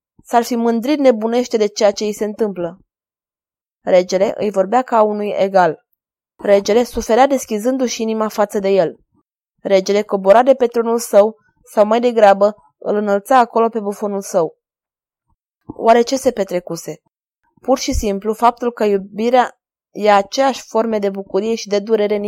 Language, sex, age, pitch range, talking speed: Romanian, female, 20-39, 200-235 Hz, 155 wpm